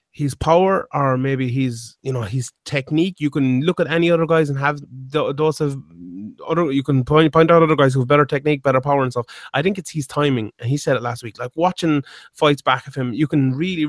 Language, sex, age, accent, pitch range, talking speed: English, male, 30-49, Irish, 130-155 Hz, 245 wpm